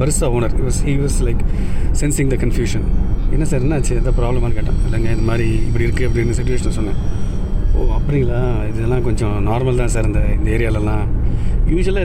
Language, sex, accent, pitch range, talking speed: Tamil, male, native, 105-135 Hz, 170 wpm